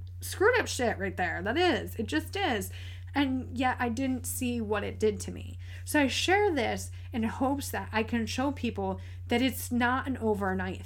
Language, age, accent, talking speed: English, 20-39, American, 200 wpm